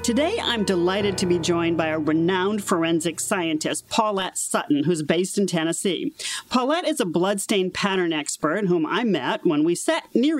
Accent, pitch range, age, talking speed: American, 170-225 Hz, 40-59, 175 wpm